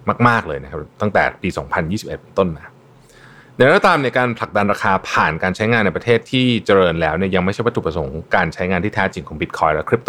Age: 30-49